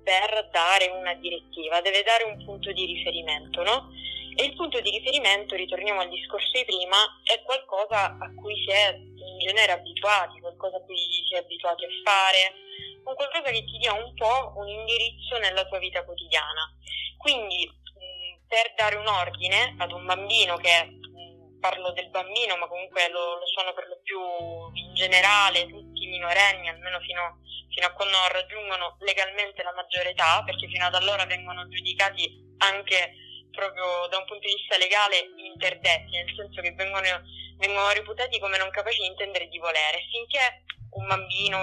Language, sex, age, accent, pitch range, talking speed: Italian, female, 20-39, native, 175-205 Hz, 170 wpm